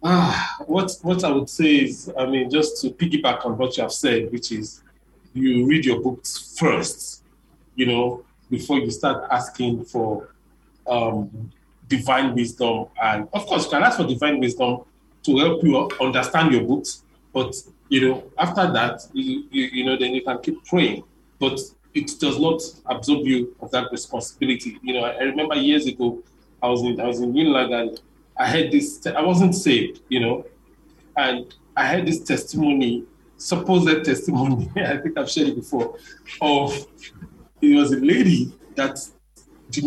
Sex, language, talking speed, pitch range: male, English, 175 wpm, 125-180 Hz